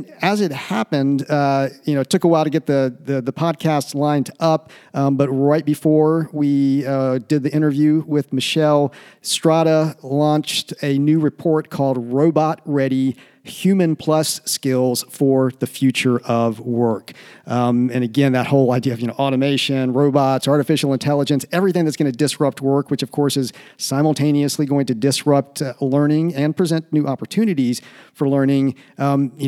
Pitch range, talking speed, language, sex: 130-150 Hz, 165 wpm, English, male